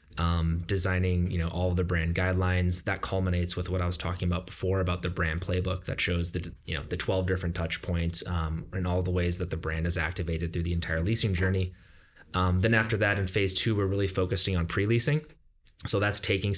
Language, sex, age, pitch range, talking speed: English, male, 20-39, 85-95 Hz, 220 wpm